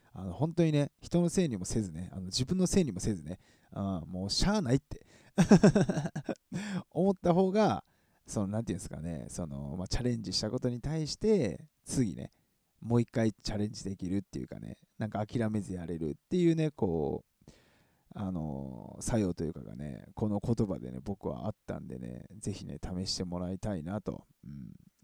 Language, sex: Japanese, male